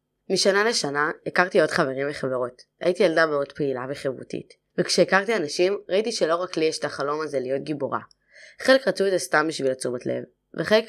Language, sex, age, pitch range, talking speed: Hebrew, female, 20-39, 140-180 Hz, 175 wpm